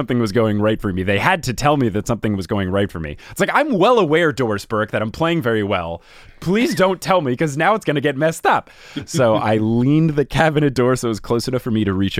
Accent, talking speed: American, 280 wpm